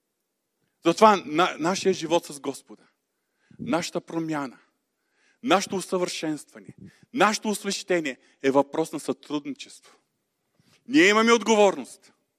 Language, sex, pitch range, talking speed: Bulgarian, male, 125-190 Hz, 95 wpm